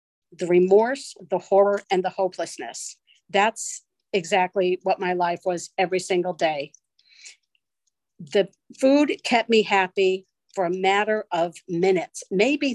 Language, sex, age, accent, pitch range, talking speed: English, female, 50-69, American, 185-225 Hz, 125 wpm